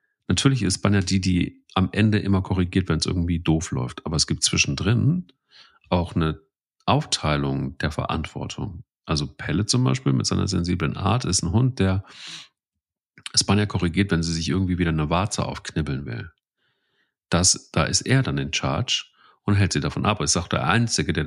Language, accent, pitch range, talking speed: German, German, 80-105 Hz, 180 wpm